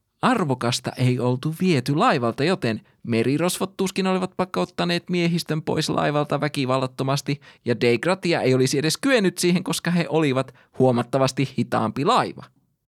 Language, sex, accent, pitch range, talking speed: Finnish, male, native, 115-160 Hz, 125 wpm